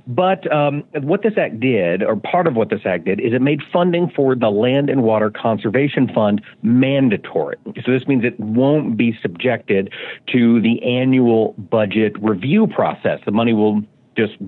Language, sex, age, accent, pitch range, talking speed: English, male, 50-69, American, 110-145 Hz, 175 wpm